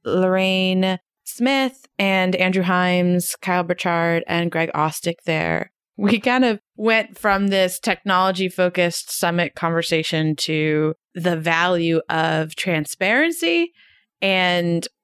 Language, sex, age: English, female, 20-39